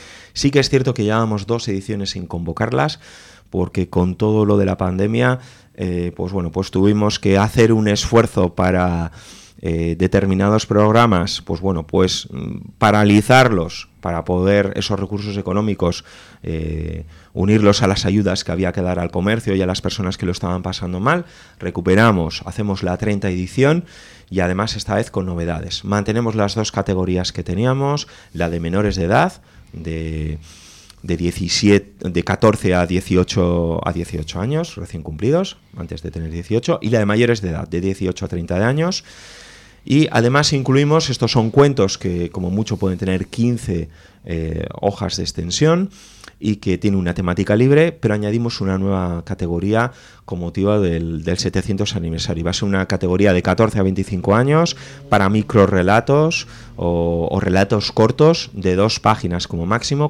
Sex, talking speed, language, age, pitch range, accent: male, 165 wpm, Spanish, 30-49, 90-110 Hz, Spanish